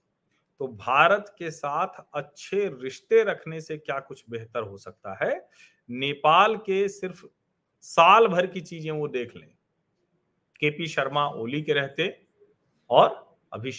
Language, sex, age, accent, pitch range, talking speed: Hindi, male, 40-59, native, 130-185 Hz, 135 wpm